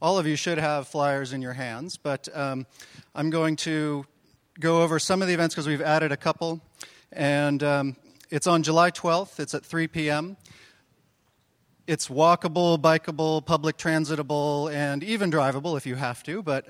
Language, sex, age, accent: English, male, 40-59, American